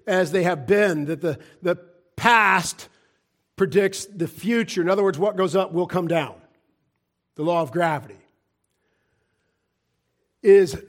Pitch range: 175-220 Hz